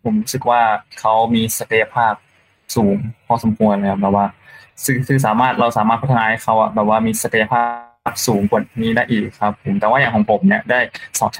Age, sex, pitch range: 20-39, male, 110-130 Hz